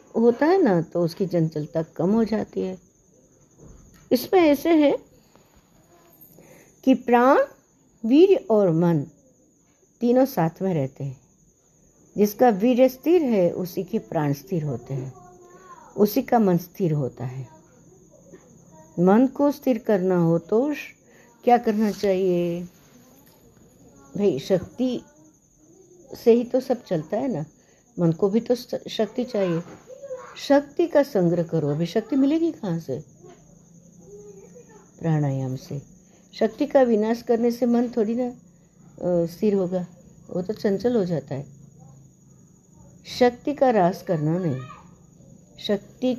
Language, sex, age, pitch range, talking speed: Hindi, female, 60-79, 165-240 Hz, 120 wpm